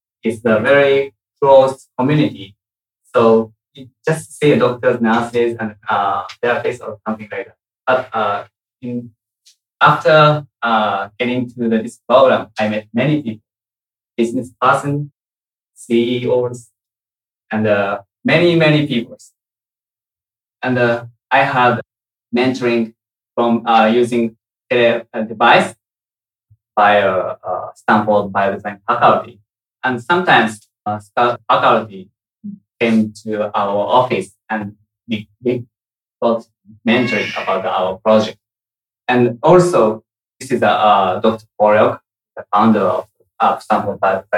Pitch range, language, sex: 105-120 Hz, Japanese, male